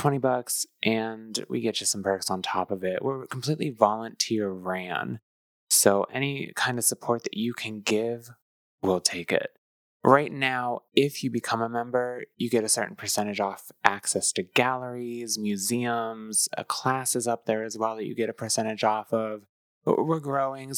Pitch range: 100-125 Hz